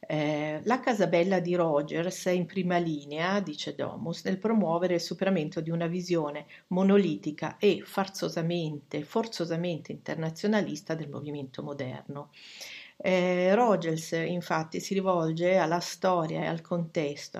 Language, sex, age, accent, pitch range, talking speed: Italian, female, 50-69, native, 160-190 Hz, 120 wpm